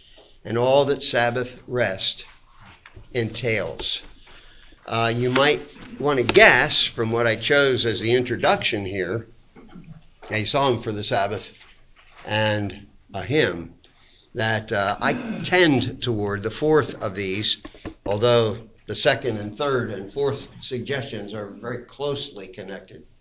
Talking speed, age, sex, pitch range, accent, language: 125 wpm, 60-79, male, 110-145 Hz, American, English